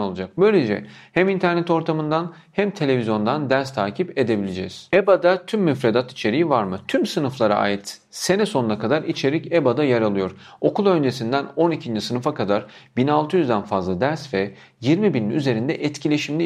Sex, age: male, 40-59